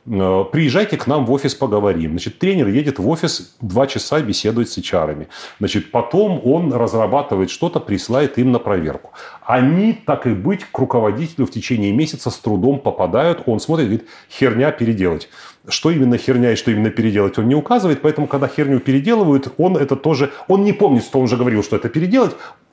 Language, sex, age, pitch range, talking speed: Russian, male, 30-49, 105-150 Hz, 180 wpm